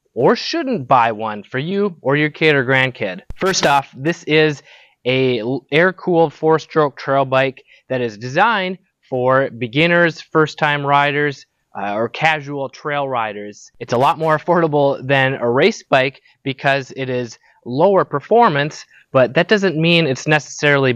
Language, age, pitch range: English, 20-39, 130-160 Hz